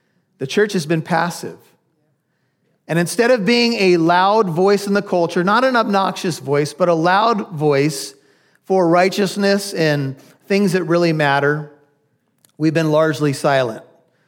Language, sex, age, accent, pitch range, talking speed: English, male, 40-59, American, 150-185 Hz, 145 wpm